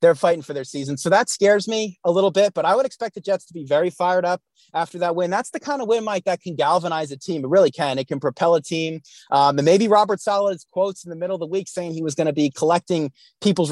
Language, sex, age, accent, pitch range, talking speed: English, male, 30-49, American, 145-185 Hz, 285 wpm